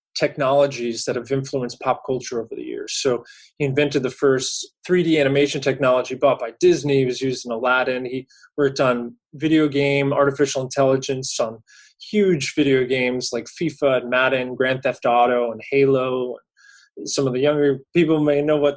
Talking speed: 170 wpm